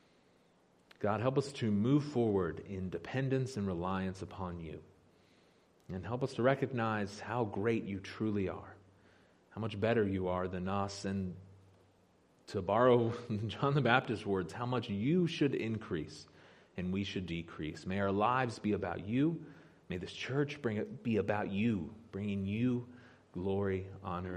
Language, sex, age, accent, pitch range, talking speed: English, male, 30-49, American, 95-130 Hz, 150 wpm